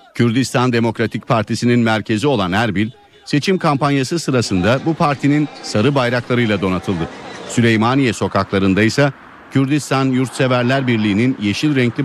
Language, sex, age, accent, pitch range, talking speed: Turkish, male, 50-69, native, 110-130 Hz, 110 wpm